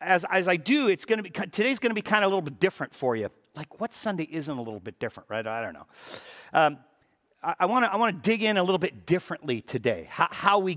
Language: English